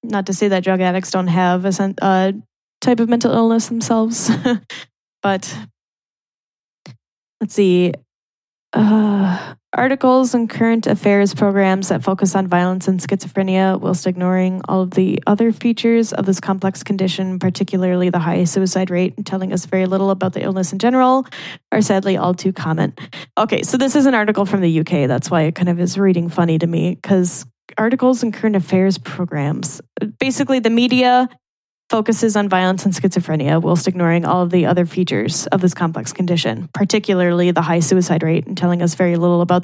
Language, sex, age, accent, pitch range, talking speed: English, female, 10-29, American, 180-205 Hz, 175 wpm